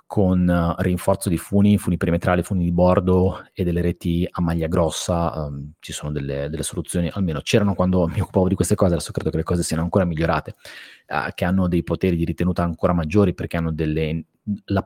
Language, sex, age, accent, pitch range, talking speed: Italian, male, 30-49, native, 85-110 Hz, 190 wpm